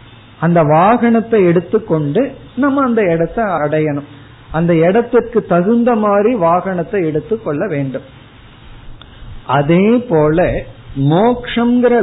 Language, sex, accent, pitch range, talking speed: Tamil, male, native, 140-195 Hz, 85 wpm